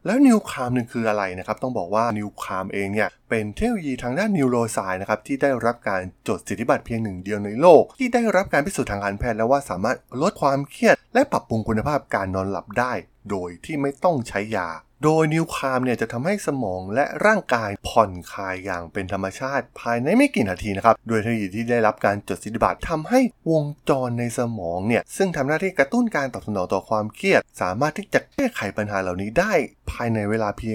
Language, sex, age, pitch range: Thai, male, 20-39, 100-140 Hz